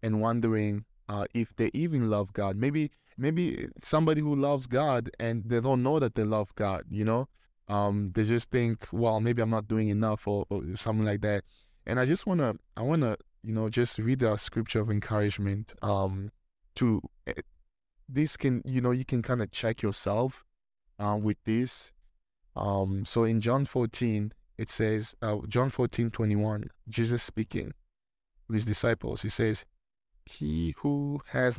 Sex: male